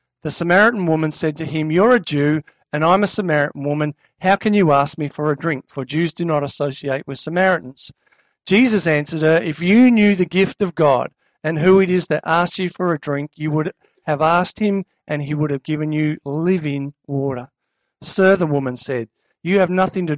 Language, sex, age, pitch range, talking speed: English, male, 50-69, 145-180 Hz, 210 wpm